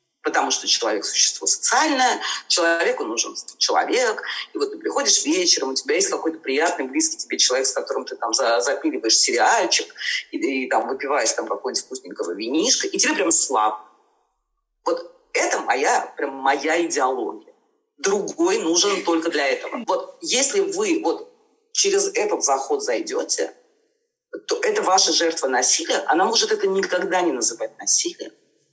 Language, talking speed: Russian, 150 wpm